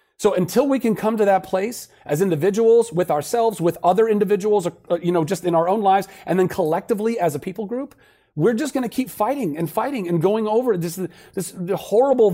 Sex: male